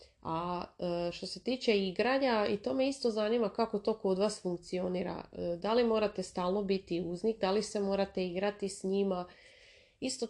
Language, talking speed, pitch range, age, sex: Croatian, 170 wpm, 175-220 Hz, 30-49, female